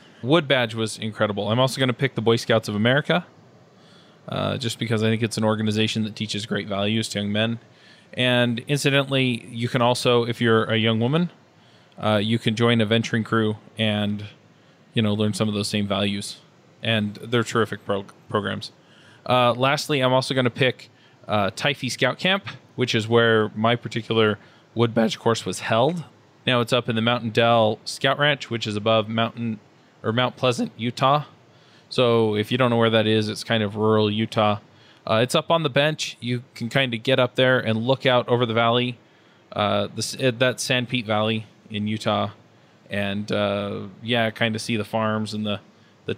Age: 20-39